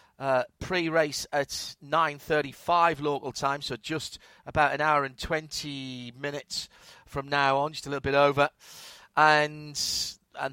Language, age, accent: English, 40-59, British